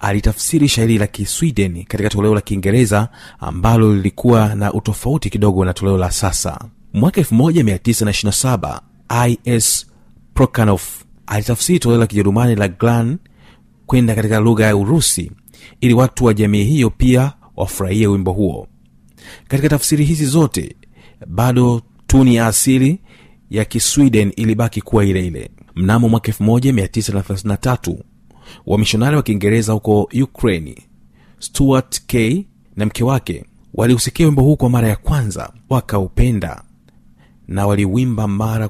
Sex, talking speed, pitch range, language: male, 120 wpm, 100-120 Hz, Swahili